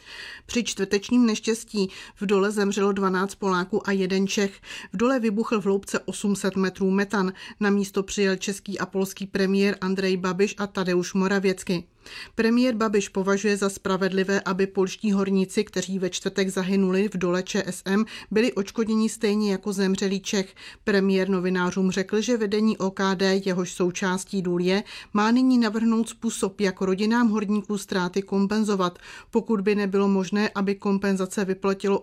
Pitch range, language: 190-215 Hz, Czech